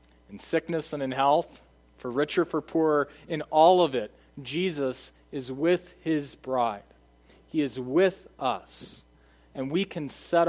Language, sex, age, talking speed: English, male, 40-59, 150 wpm